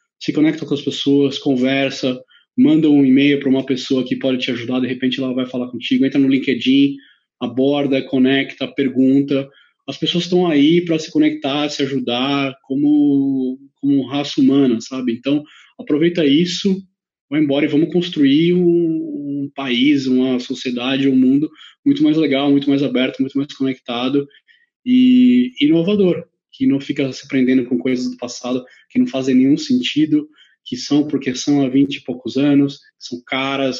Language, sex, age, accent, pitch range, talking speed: Portuguese, male, 20-39, Brazilian, 125-150 Hz, 165 wpm